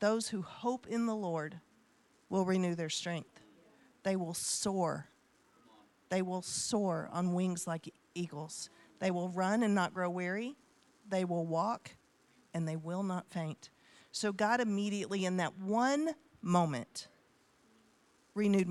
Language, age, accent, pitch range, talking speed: English, 40-59, American, 175-225 Hz, 140 wpm